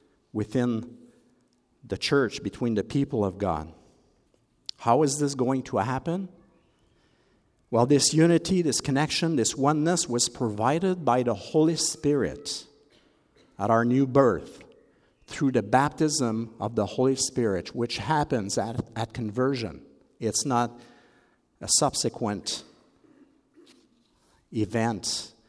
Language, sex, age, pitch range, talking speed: English, male, 50-69, 110-145 Hz, 115 wpm